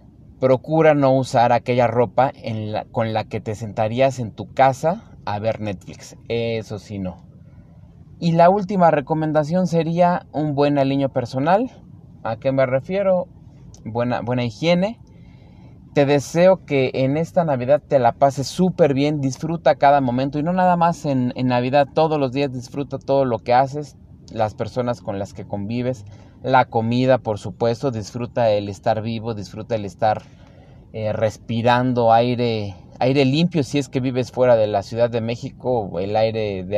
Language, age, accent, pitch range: Spanish, 30-49, Mexican, 115-140 Hz